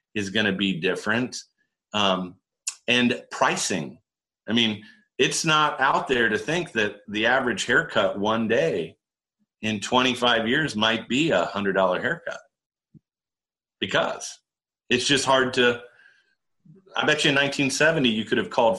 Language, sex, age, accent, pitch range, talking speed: English, male, 40-59, American, 100-125 Hz, 145 wpm